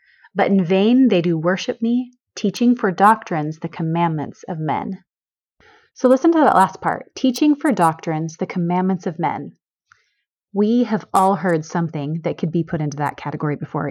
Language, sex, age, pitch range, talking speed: English, female, 30-49, 170-210 Hz, 175 wpm